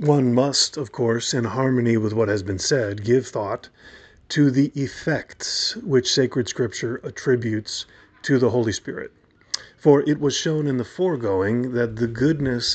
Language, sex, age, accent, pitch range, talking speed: English, male, 40-59, American, 110-135 Hz, 160 wpm